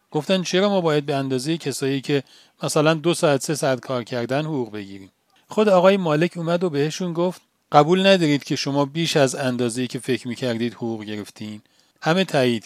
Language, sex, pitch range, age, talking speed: Persian, male, 130-180 Hz, 40-59, 185 wpm